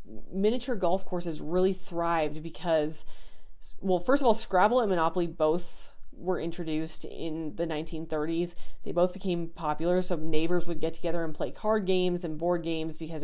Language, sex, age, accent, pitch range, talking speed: English, female, 30-49, American, 155-180 Hz, 165 wpm